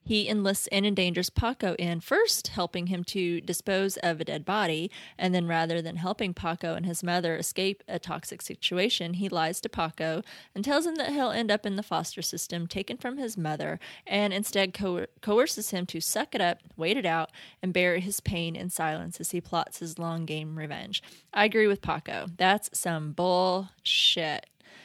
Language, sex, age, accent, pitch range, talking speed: English, female, 20-39, American, 170-195 Hz, 190 wpm